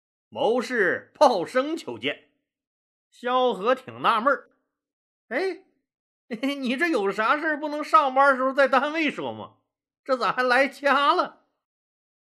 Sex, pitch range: male, 170-265 Hz